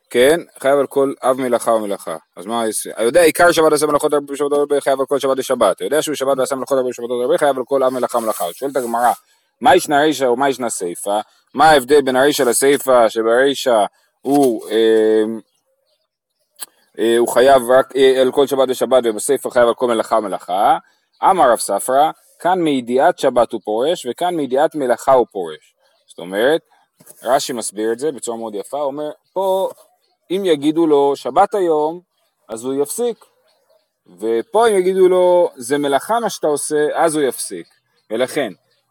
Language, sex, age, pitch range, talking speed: Hebrew, male, 20-39, 130-155 Hz, 165 wpm